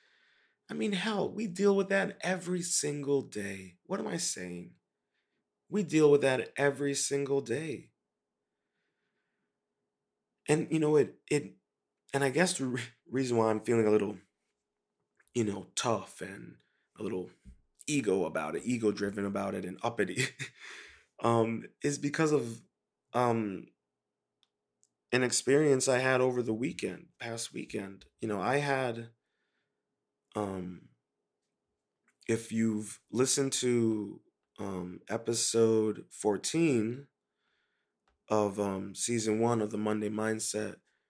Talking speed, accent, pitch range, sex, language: 125 wpm, American, 105-125 Hz, male, English